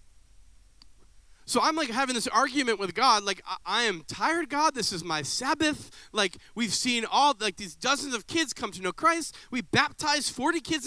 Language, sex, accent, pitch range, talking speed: English, male, American, 175-230 Hz, 195 wpm